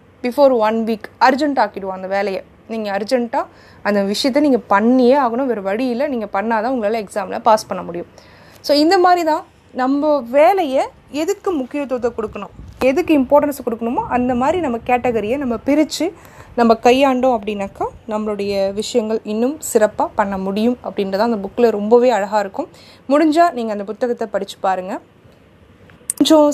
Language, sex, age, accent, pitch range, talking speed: Tamil, female, 20-39, native, 210-270 Hz, 145 wpm